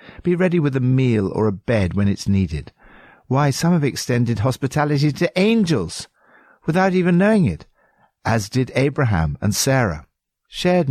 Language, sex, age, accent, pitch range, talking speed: English, male, 60-79, British, 95-135 Hz, 155 wpm